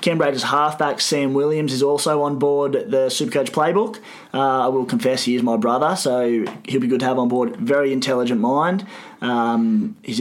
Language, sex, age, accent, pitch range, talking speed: English, male, 20-39, Australian, 125-150 Hz, 195 wpm